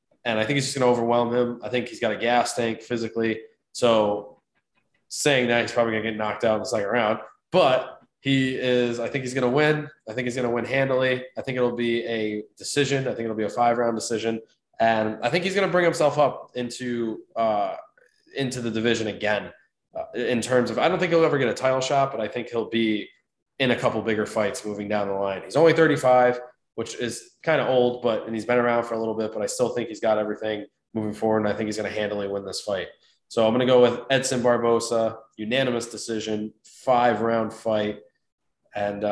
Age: 20-39